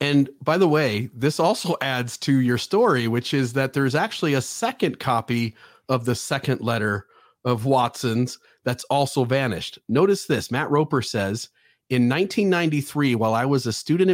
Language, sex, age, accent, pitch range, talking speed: English, male, 40-59, American, 115-140 Hz, 165 wpm